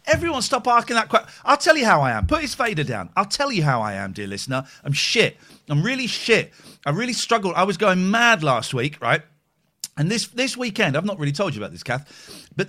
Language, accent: English, British